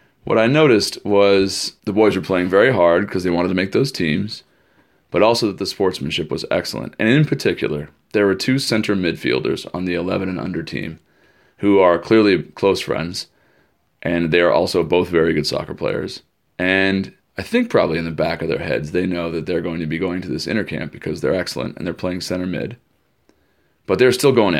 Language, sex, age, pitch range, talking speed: English, male, 30-49, 85-100 Hz, 200 wpm